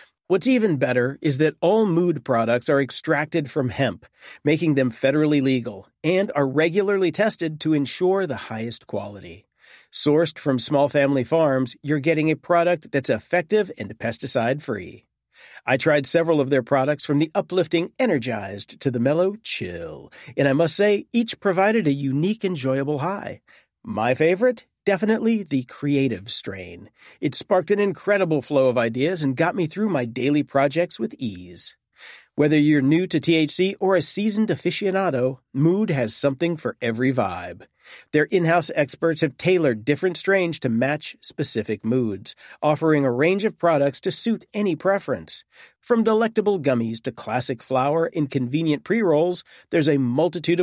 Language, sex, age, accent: English, male, 40-59, American